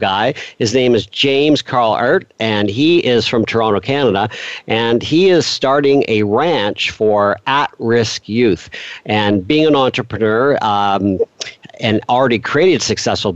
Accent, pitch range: American, 105-135 Hz